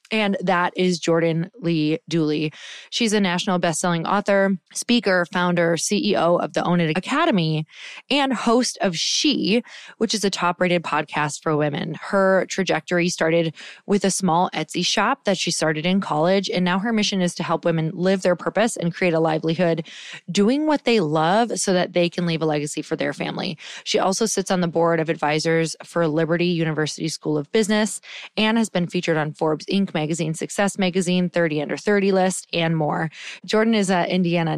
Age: 20-39